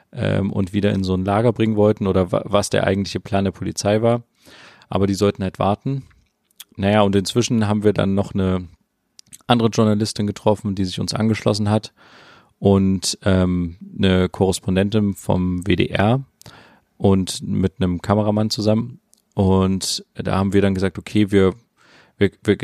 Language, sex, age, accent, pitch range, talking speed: German, male, 30-49, German, 95-110 Hz, 150 wpm